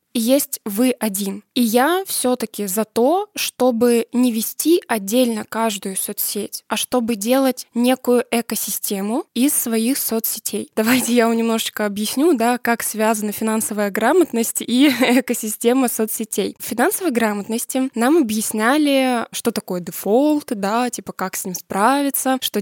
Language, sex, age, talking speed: Russian, female, 10-29, 140 wpm